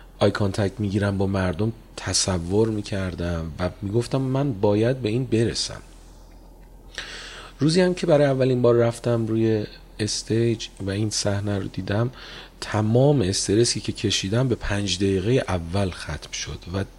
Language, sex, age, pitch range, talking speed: Persian, male, 40-59, 85-120 Hz, 145 wpm